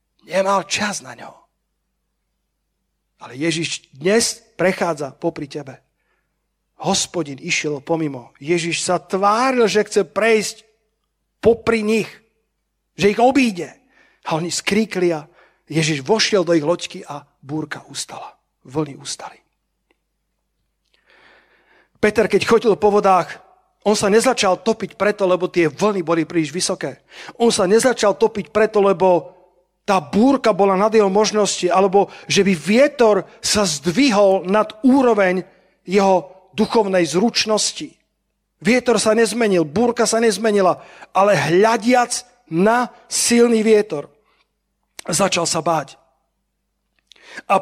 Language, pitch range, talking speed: Slovak, 170-220 Hz, 115 wpm